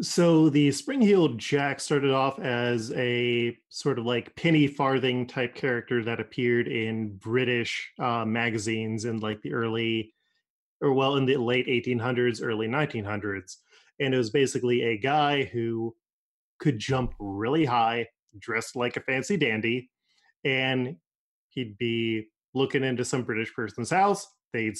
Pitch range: 115-140 Hz